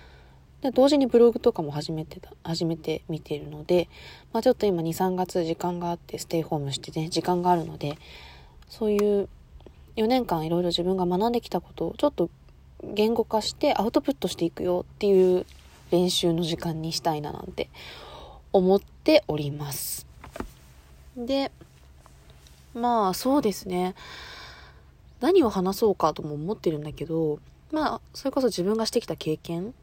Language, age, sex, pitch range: Japanese, 20-39, female, 155-220 Hz